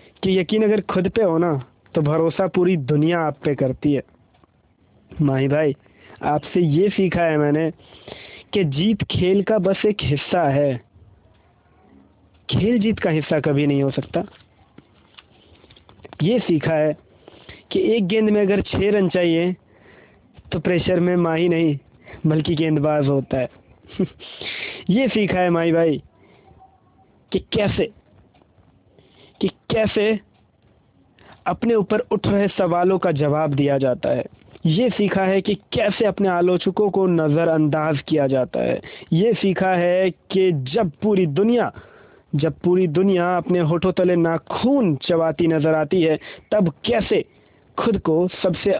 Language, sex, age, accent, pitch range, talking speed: Hindi, male, 20-39, native, 145-190 Hz, 140 wpm